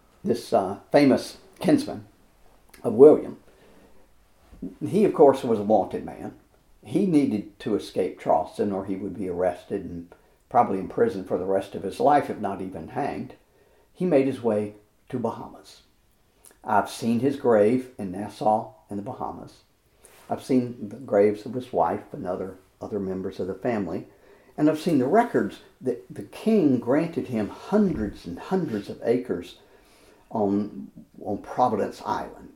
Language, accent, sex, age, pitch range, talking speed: English, American, male, 60-79, 100-125 Hz, 155 wpm